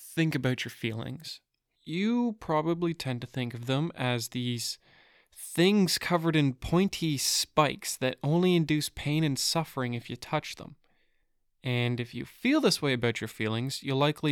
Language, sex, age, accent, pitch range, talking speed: English, male, 20-39, American, 125-165 Hz, 165 wpm